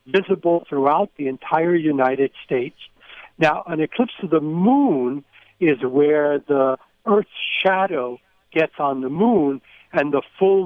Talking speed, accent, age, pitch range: 135 wpm, American, 60-79, 140-190 Hz